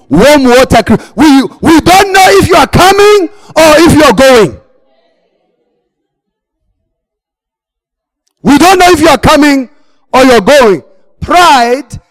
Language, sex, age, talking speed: English, male, 40-59, 135 wpm